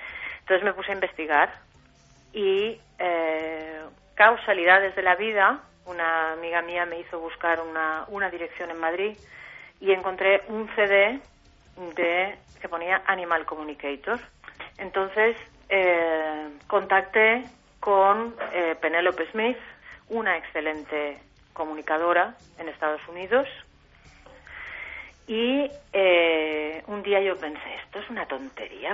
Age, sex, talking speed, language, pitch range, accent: 40-59, female, 110 wpm, Spanish, 155-195 Hz, Spanish